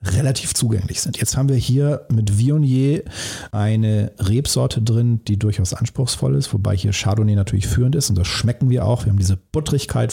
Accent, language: German, German